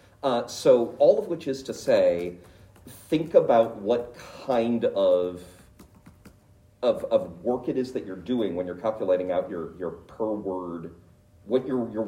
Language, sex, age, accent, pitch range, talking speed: English, male, 40-59, American, 95-125 Hz, 160 wpm